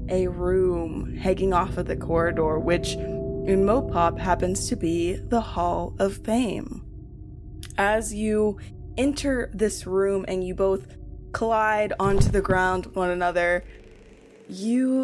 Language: English